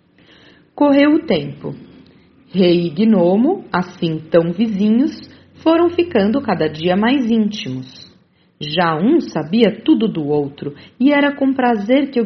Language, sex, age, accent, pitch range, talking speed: Portuguese, female, 40-59, Brazilian, 160-230 Hz, 130 wpm